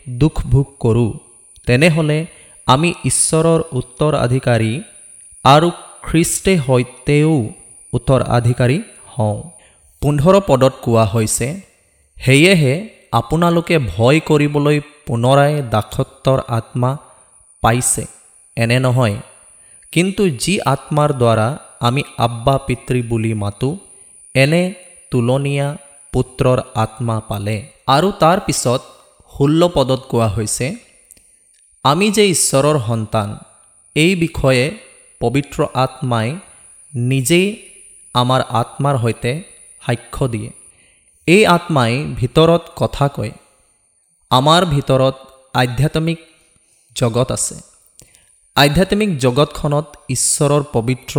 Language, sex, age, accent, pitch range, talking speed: Malayalam, male, 20-39, native, 120-155 Hz, 75 wpm